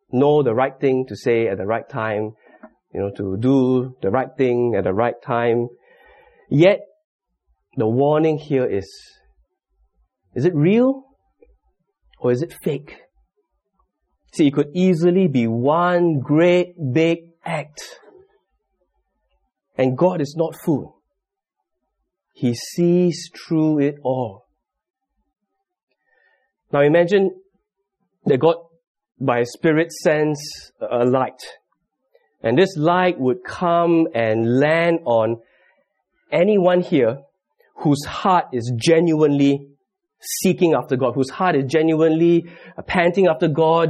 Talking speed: 120 wpm